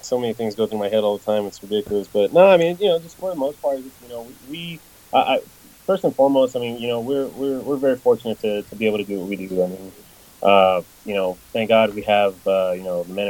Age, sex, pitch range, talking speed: 20-39, male, 90-110 Hz, 265 wpm